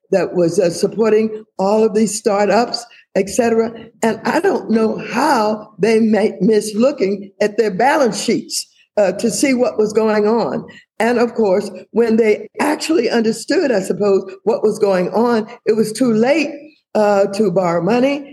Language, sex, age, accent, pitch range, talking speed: English, female, 50-69, American, 200-245 Hz, 165 wpm